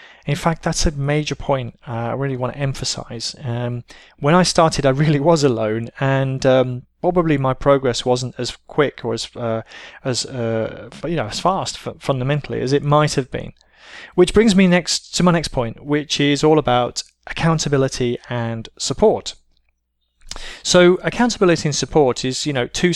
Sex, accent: male, British